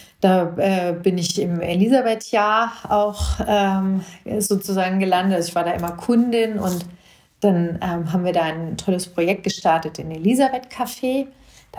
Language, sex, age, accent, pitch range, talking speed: German, female, 40-59, German, 175-200 Hz, 155 wpm